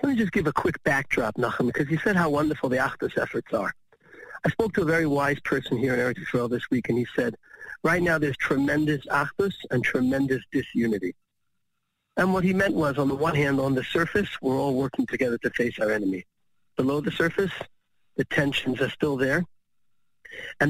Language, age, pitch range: English, 40-59, 135-170 Hz